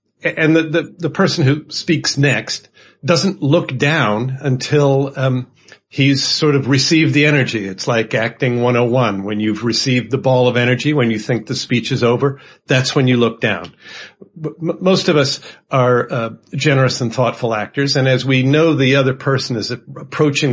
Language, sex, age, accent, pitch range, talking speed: English, male, 50-69, American, 115-145 Hz, 180 wpm